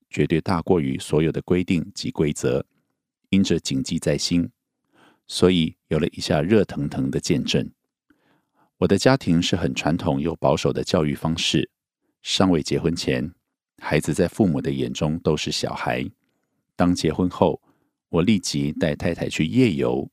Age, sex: 50-69, male